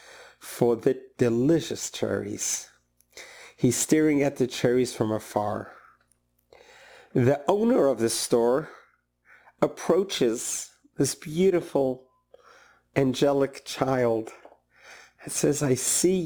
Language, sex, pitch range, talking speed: English, male, 110-165 Hz, 90 wpm